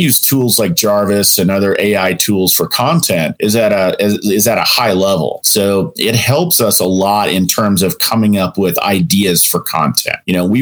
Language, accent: English, American